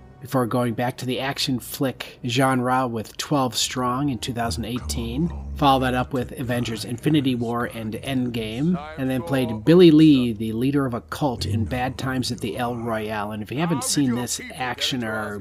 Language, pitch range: English, 110-135 Hz